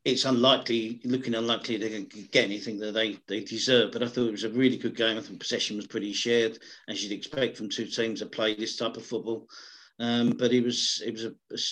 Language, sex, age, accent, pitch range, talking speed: English, male, 50-69, British, 115-140 Hz, 245 wpm